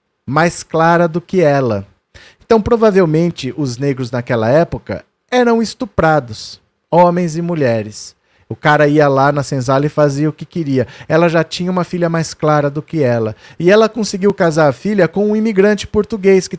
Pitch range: 145-190 Hz